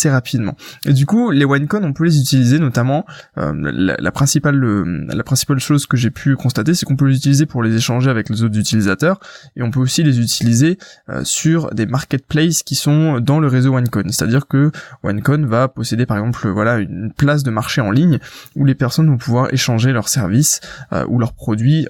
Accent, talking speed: French, 220 wpm